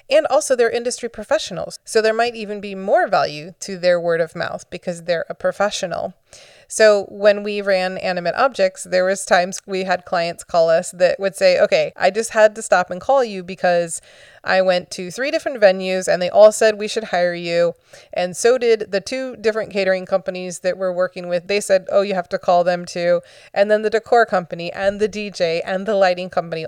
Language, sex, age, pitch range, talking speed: English, female, 30-49, 180-225 Hz, 215 wpm